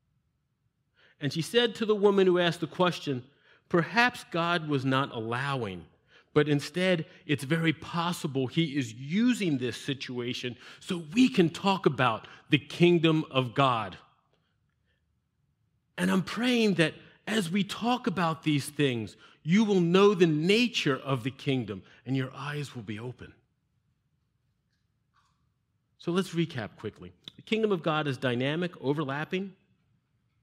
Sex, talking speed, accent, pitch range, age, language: male, 135 wpm, American, 130-175 Hz, 40-59, English